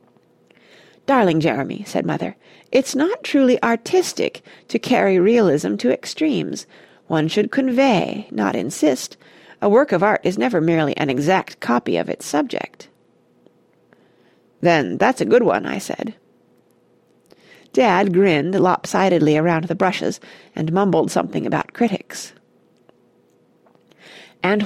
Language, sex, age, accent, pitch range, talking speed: English, female, 40-59, American, 170-260 Hz, 120 wpm